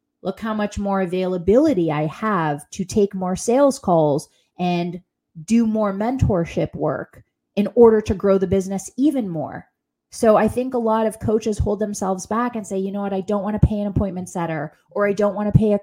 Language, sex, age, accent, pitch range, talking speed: English, female, 30-49, American, 190-245 Hz, 210 wpm